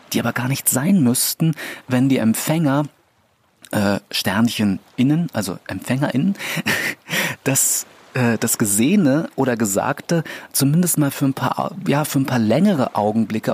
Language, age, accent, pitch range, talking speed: German, 30-49, German, 110-145 Hz, 135 wpm